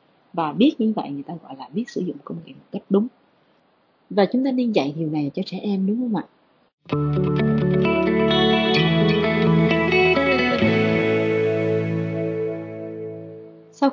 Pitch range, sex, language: 155-250 Hz, female, Vietnamese